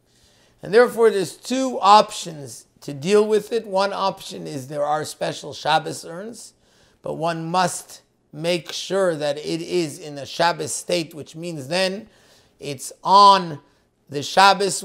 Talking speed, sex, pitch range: 145 wpm, male, 155-195 Hz